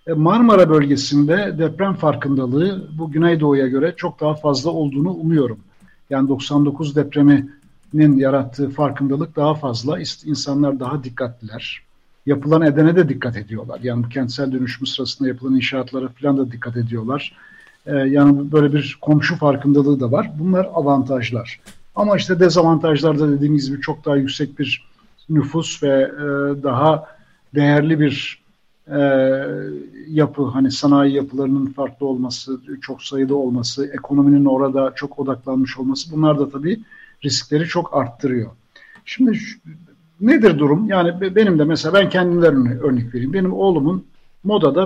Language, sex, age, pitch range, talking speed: Turkish, male, 60-79, 135-160 Hz, 130 wpm